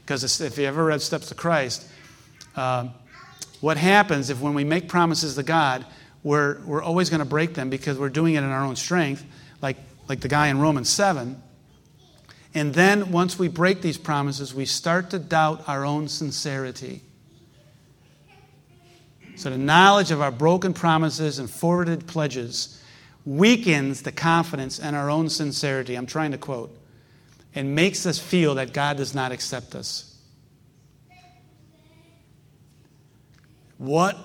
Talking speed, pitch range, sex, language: 150 wpm, 135-165 Hz, male, English